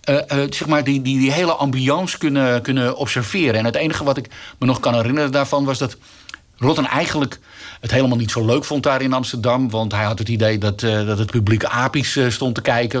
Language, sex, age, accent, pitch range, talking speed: Dutch, male, 50-69, Dutch, 115-155 Hz, 230 wpm